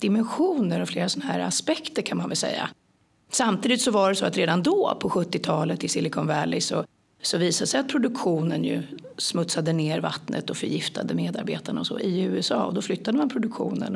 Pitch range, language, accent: 185-240 Hz, Swedish, native